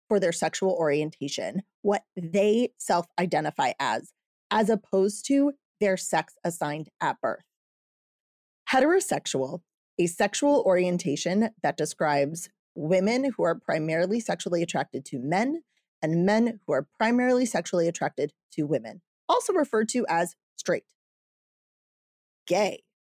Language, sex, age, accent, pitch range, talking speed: English, female, 30-49, American, 165-225 Hz, 115 wpm